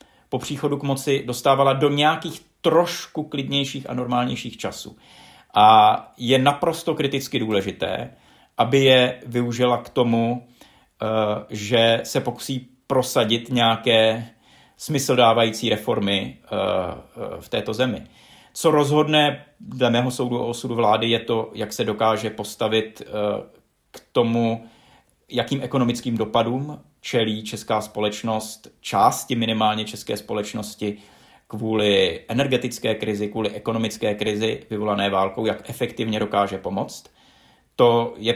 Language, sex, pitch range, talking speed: Czech, male, 110-130 Hz, 115 wpm